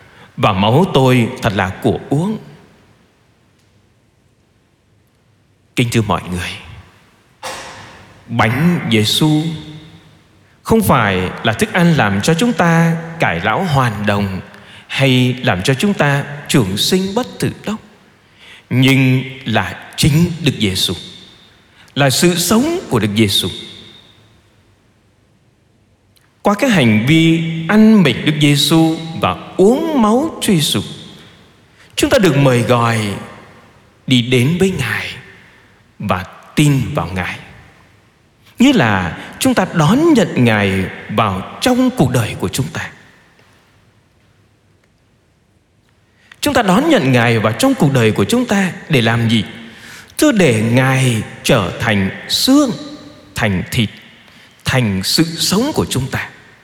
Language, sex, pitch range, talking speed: Vietnamese, male, 105-165 Hz, 125 wpm